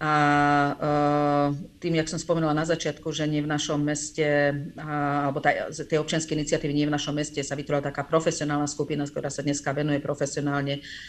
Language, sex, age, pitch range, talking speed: Slovak, female, 40-59, 145-160 Hz, 160 wpm